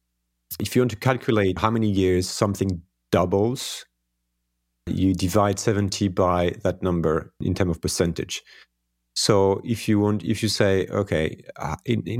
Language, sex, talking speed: English, male, 150 wpm